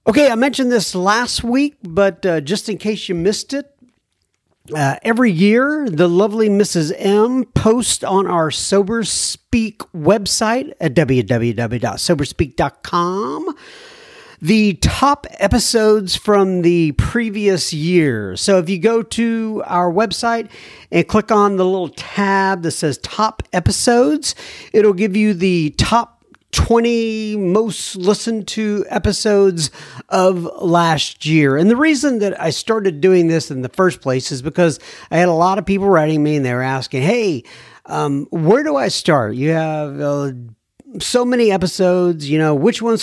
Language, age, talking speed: English, 50-69, 150 wpm